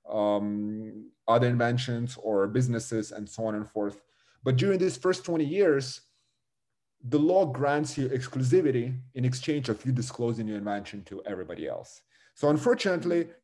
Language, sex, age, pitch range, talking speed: Ukrainian, male, 30-49, 110-150 Hz, 145 wpm